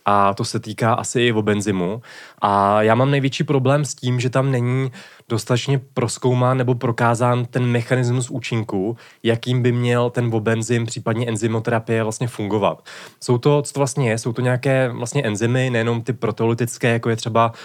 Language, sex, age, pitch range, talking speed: Czech, male, 20-39, 115-130 Hz, 170 wpm